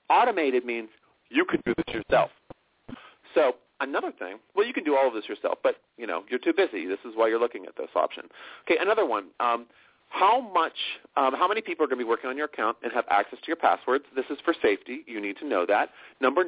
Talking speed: 240 wpm